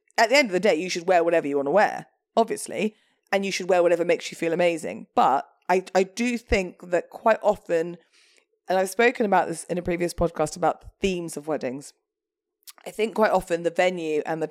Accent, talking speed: British, 220 wpm